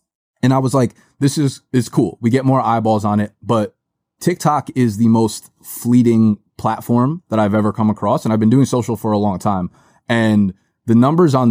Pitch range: 105-125 Hz